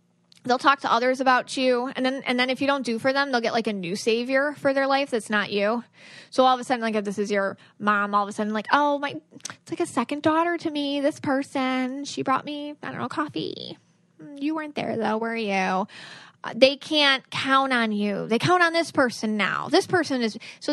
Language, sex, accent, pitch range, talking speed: English, female, American, 210-270 Hz, 240 wpm